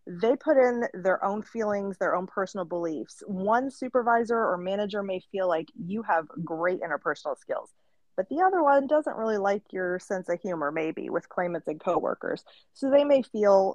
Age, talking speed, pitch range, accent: 20-39, 185 wpm, 185-235 Hz, American